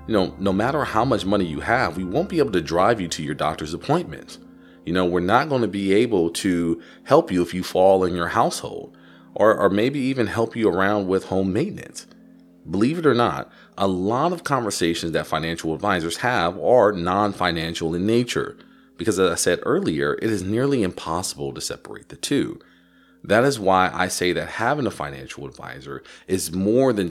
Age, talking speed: 30-49, 195 wpm